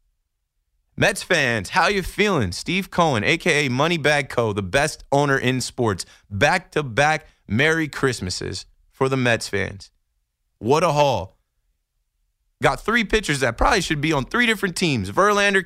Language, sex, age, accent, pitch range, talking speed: English, male, 20-39, American, 105-160 Hz, 140 wpm